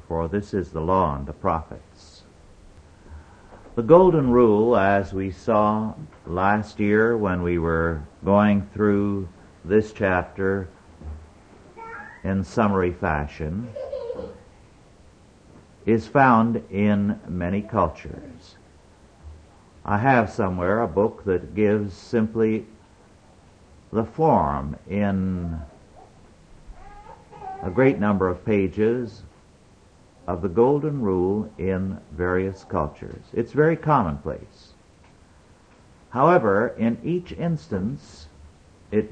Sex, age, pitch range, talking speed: male, 60-79, 85-110 Hz, 95 wpm